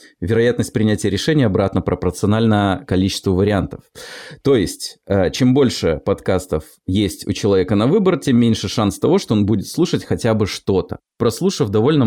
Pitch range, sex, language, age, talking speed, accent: 100-135 Hz, male, Russian, 20-39, 150 wpm, native